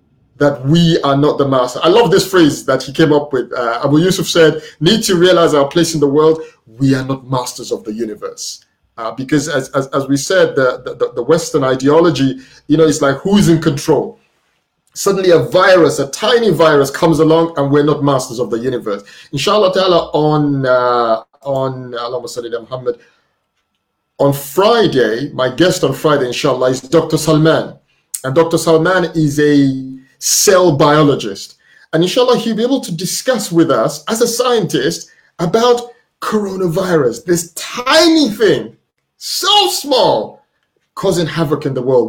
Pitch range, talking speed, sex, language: 135-170 Hz, 165 wpm, male, English